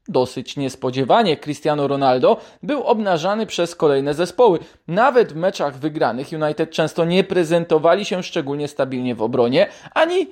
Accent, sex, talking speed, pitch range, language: native, male, 135 wpm, 140-190 Hz, Polish